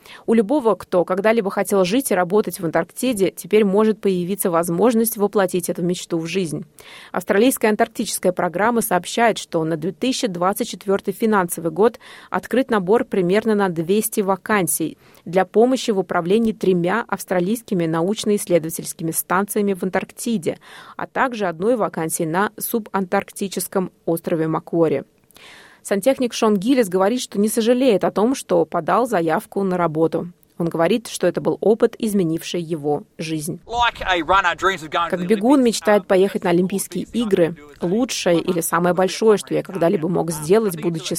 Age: 20-39